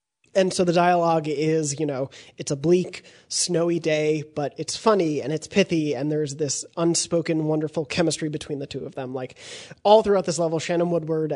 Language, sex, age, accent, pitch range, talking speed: English, male, 20-39, American, 145-175 Hz, 190 wpm